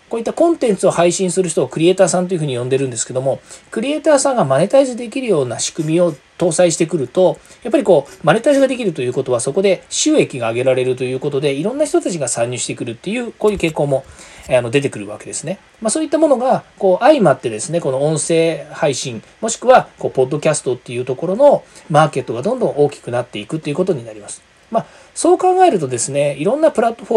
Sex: male